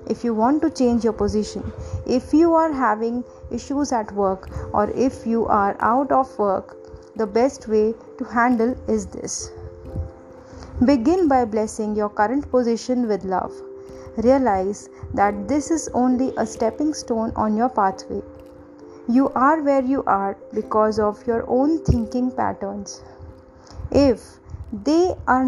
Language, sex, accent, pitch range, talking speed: English, female, Indian, 195-260 Hz, 145 wpm